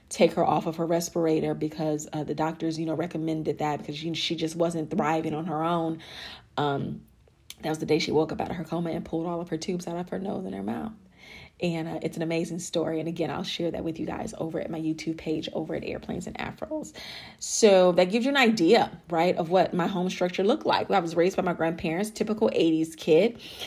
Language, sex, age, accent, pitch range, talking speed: English, female, 30-49, American, 160-205 Hz, 240 wpm